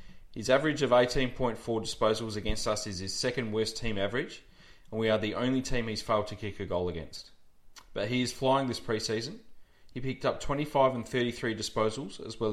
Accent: Australian